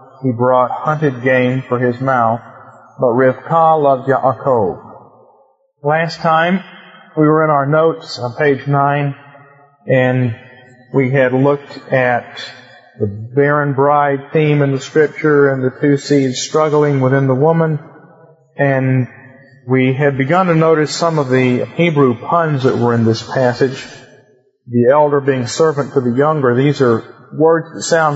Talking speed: 145 wpm